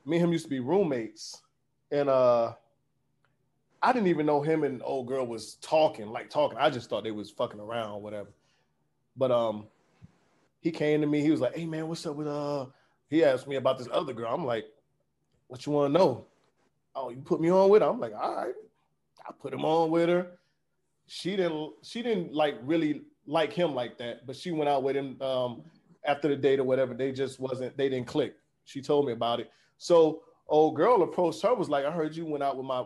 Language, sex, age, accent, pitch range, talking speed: English, male, 20-39, American, 130-165 Hz, 225 wpm